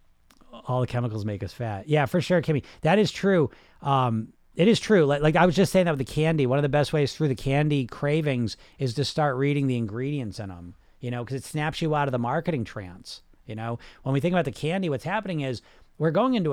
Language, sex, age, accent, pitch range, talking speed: English, male, 40-59, American, 120-160 Hz, 250 wpm